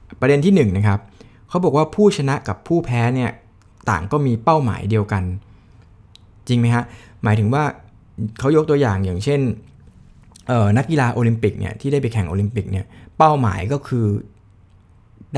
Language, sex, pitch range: Thai, male, 105-135 Hz